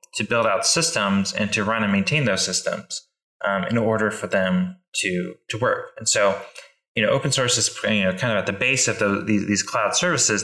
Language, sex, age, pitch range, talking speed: English, male, 20-39, 100-165 Hz, 225 wpm